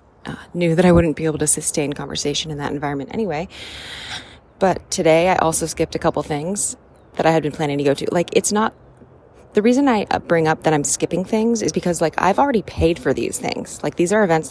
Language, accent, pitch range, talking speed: English, American, 150-185 Hz, 230 wpm